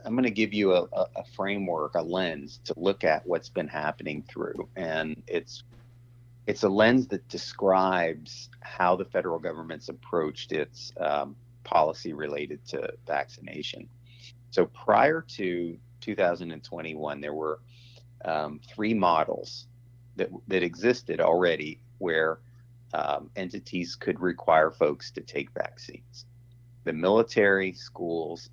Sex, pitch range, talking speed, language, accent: male, 80-120 Hz, 125 wpm, English, American